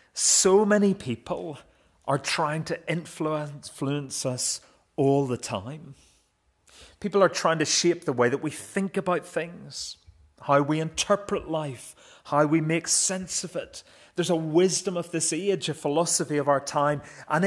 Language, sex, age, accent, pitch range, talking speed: English, male, 40-59, British, 130-175 Hz, 155 wpm